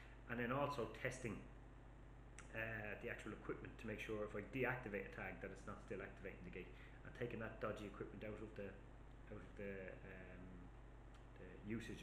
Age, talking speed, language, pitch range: 30-49, 185 wpm, English, 105-130 Hz